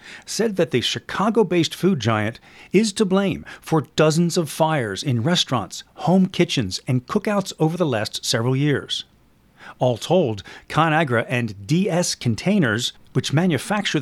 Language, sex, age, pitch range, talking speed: English, male, 40-59, 125-180 Hz, 135 wpm